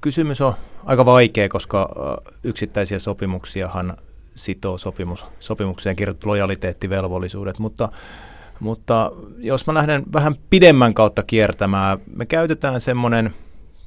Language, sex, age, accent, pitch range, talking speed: Finnish, male, 30-49, native, 90-110 Hz, 105 wpm